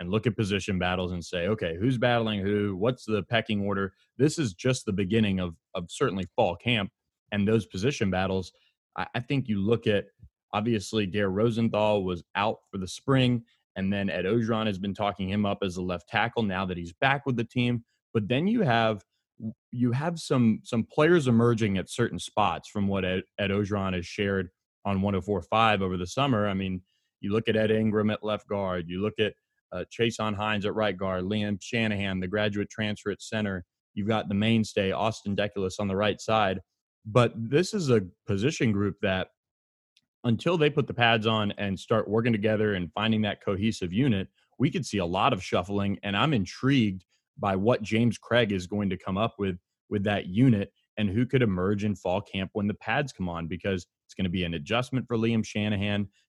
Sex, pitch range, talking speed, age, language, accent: male, 95-115 Hz, 205 wpm, 30-49, English, American